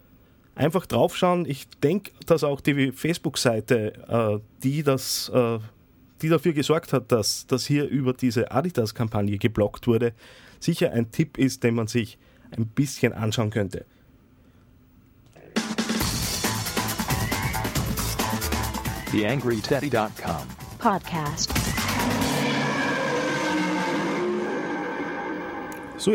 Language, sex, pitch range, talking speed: German, male, 110-145 Hz, 85 wpm